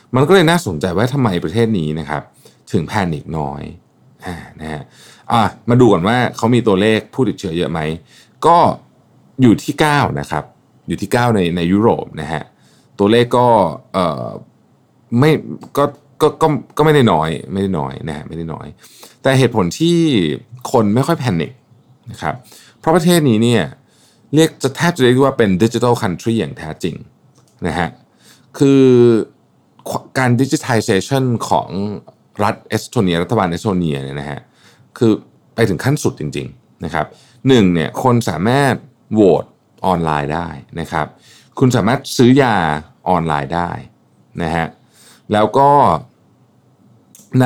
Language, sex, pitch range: Thai, male, 85-130 Hz